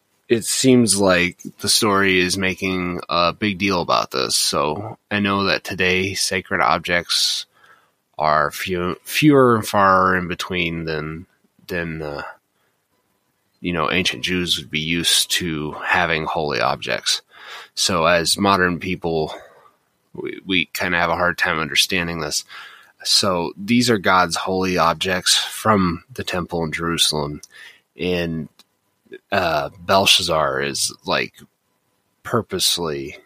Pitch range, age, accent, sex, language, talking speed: 85-105 Hz, 20-39, American, male, English, 130 wpm